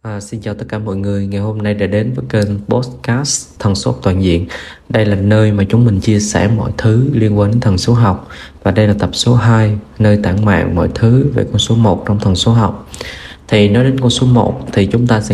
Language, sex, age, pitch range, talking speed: Vietnamese, male, 20-39, 100-120 Hz, 255 wpm